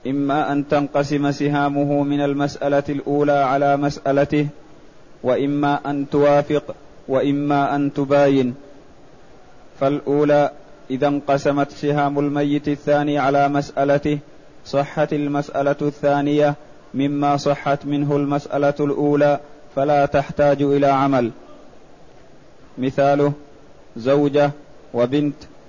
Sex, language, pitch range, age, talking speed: male, Arabic, 140-145 Hz, 30-49, 90 wpm